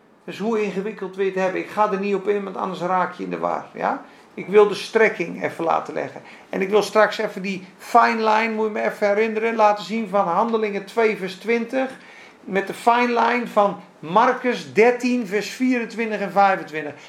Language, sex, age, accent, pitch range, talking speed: Dutch, male, 50-69, Dutch, 210-265 Hz, 200 wpm